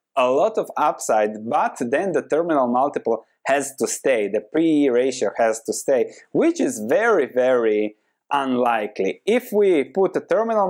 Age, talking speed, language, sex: 20-39, 155 wpm, English, male